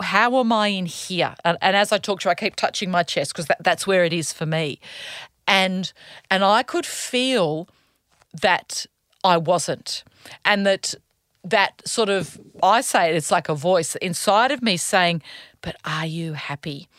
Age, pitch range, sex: 40-59, 165-215 Hz, female